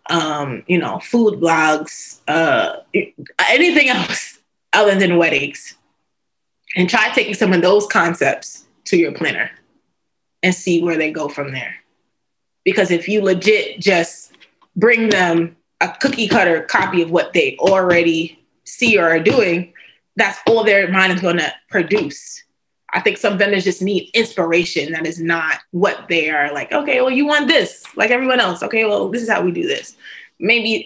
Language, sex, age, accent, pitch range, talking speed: English, female, 20-39, American, 170-215 Hz, 165 wpm